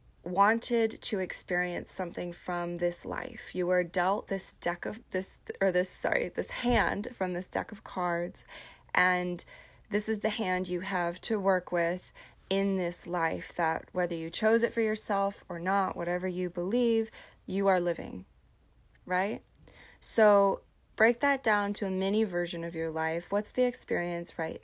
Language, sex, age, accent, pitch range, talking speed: English, female, 20-39, American, 175-195 Hz, 165 wpm